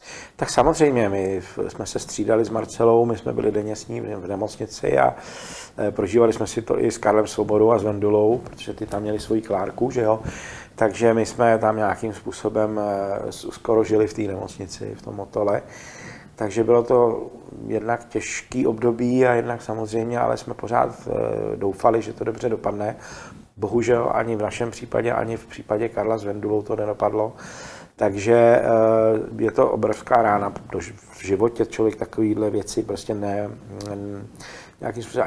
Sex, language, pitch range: male, Czech, 105-115 Hz